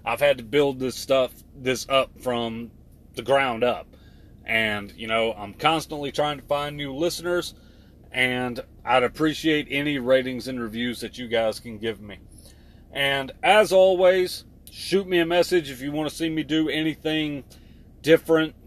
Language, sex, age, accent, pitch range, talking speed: English, male, 30-49, American, 125-170 Hz, 165 wpm